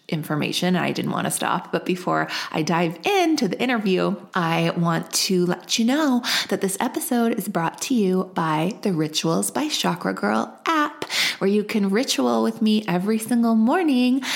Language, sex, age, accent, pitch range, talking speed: English, female, 20-39, American, 170-210 Hz, 175 wpm